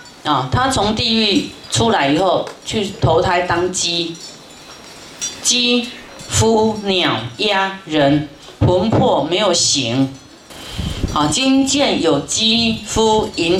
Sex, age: female, 30-49